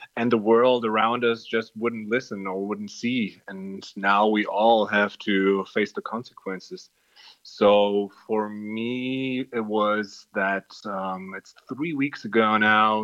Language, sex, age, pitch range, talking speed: English, male, 30-49, 100-120 Hz, 145 wpm